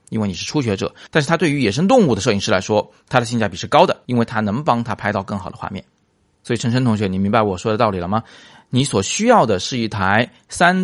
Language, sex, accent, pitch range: Chinese, male, native, 100-130 Hz